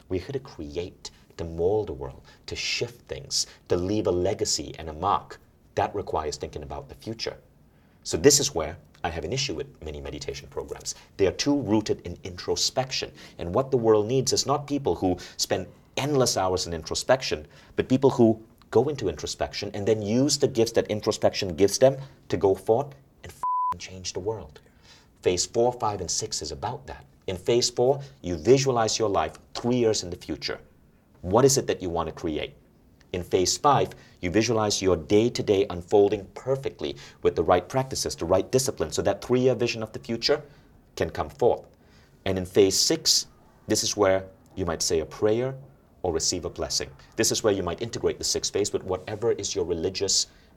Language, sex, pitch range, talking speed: English, male, 100-140 Hz, 190 wpm